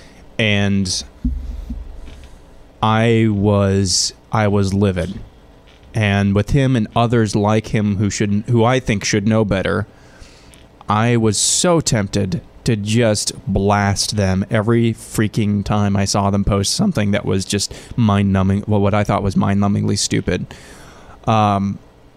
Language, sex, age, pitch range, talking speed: English, male, 20-39, 95-110 Hz, 140 wpm